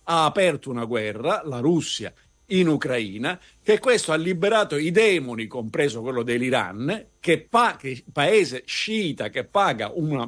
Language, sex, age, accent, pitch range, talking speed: Italian, male, 50-69, native, 130-210 Hz, 145 wpm